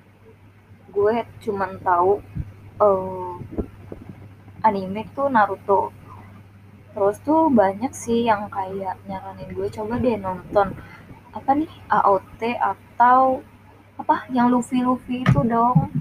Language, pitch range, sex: Indonesian, 190-250 Hz, female